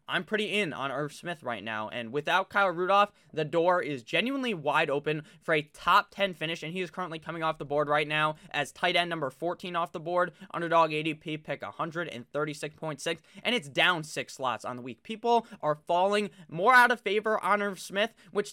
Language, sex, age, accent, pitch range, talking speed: English, male, 20-39, American, 150-200 Hz, 205 wpm